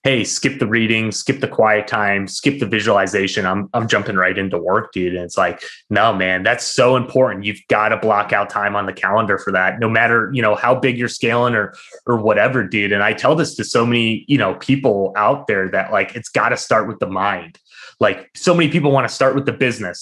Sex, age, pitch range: male, 20-39, 100-130 Hz